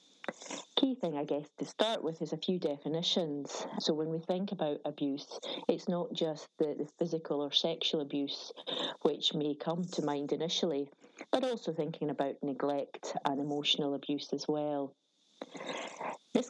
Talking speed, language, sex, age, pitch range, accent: 155 wpm, English, female, 30-49, 145-170 Hz, British